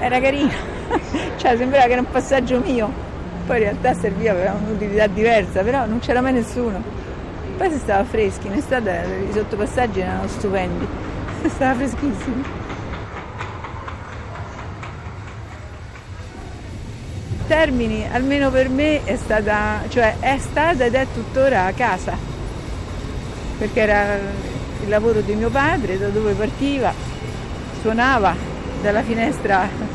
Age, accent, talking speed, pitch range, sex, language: 50-69, native, 120 wpm, 170-230 Hz, female, Italian